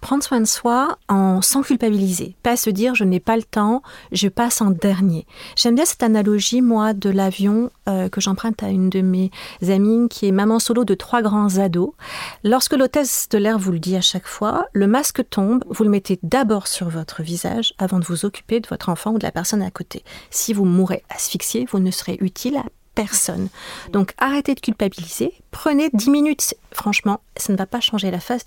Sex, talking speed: female, 210 wpm